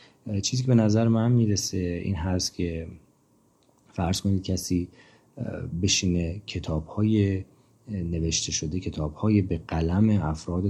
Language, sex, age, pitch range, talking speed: Persian, male, 30-49, 80-100 Hz, 110 wpm